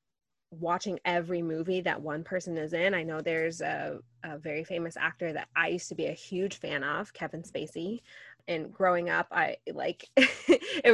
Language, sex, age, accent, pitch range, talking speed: English, female, 20-39, American, 165-190 Hz, 180 wpm